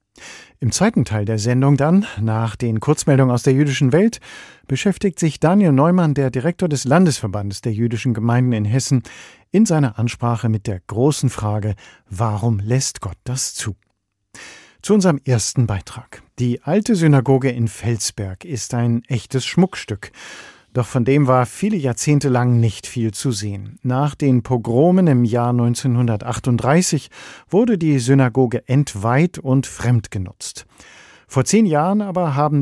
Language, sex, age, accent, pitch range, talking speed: German, male, 50-69, German, 115-145 Hz, 145 wpm